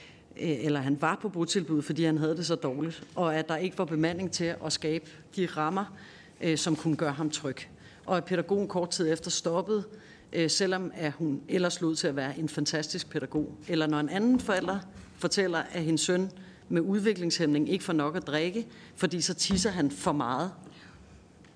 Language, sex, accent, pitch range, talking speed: Danish, female, native, 155-195 Hz, 185 wpm